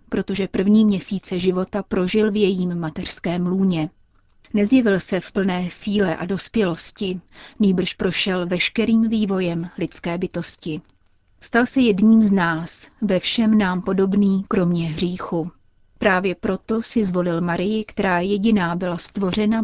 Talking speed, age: 130 wpm, 40-59